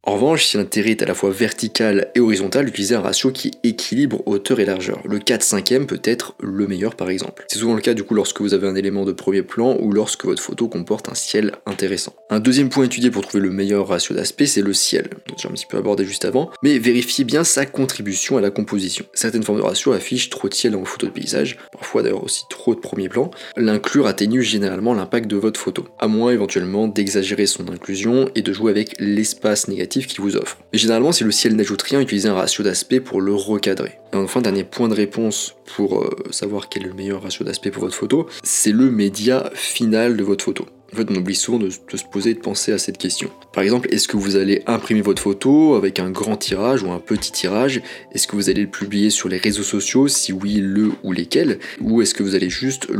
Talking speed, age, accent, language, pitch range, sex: 240 wpm, 20-39, French, French, 100-120 Hz, male